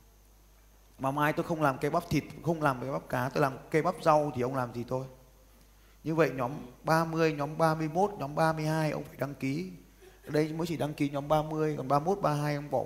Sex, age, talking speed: male, 20-39, 225 wpm